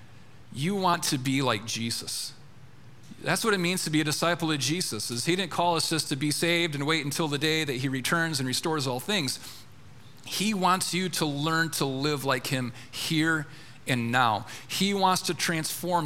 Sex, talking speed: male, 200 wpm